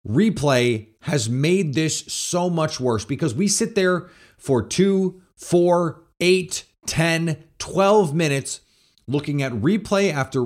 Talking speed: 140 wpm